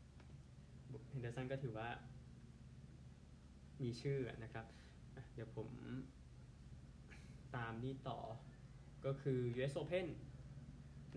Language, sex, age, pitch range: Thai, male, 20-39, 125-140 Hz